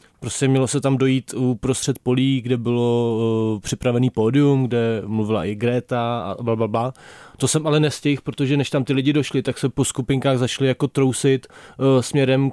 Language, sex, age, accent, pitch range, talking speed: Czech, male, 20-39, native, 120-135 Hz, 175 wpm